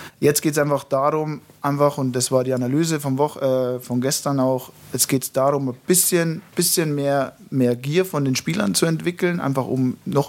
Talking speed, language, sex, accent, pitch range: 205 wpm, German, male, German, 130-150 Hz